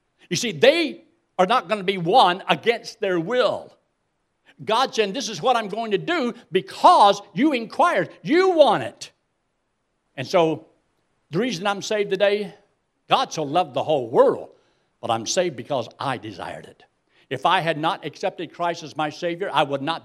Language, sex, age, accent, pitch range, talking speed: English, male, 60-79, American, 165-235 Hz, 175 wpm